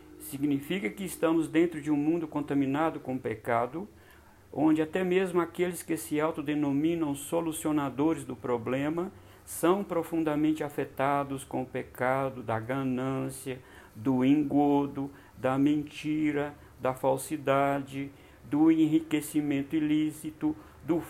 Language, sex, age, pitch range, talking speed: Portuguese, male, 60-79, 130-160 Hz, 110 wpm